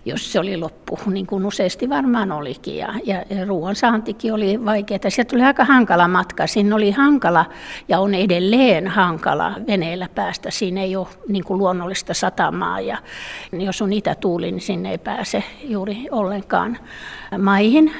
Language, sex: Finnish, female